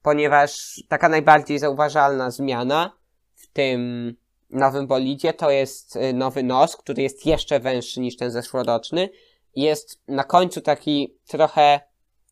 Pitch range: 130-155 Hz